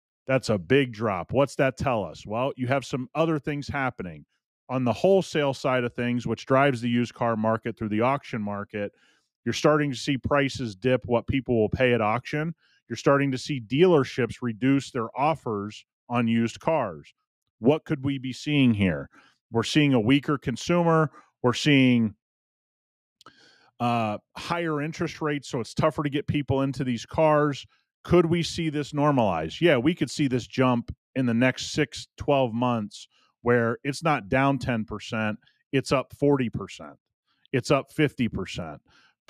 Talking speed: 165 wpm